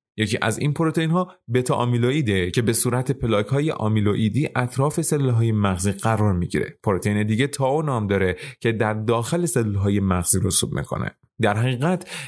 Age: 30-49